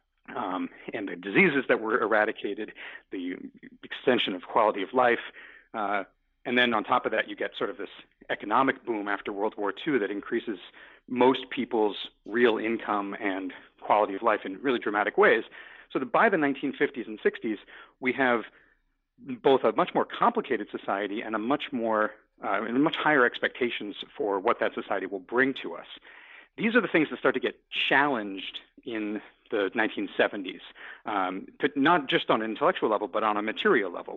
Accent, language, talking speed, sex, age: American, English, 180 wpm, male, 40-59